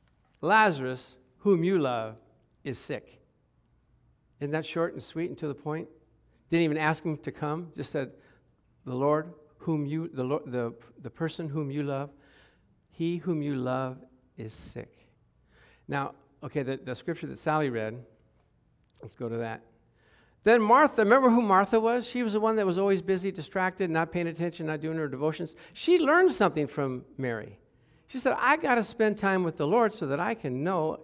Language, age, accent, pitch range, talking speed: English, 60-79, American, 140-220 Hz, 185 wpm